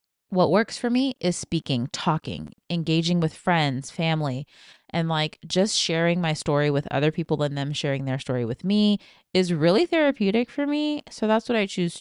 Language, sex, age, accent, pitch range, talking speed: English, female, 20-39, American, 155-220 Hz, 185 wpm